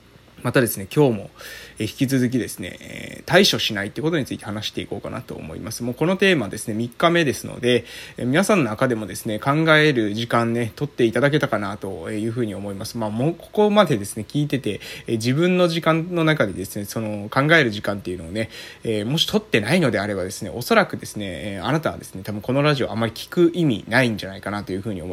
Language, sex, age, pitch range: Japanese, male, 20-39, 110-155 Hz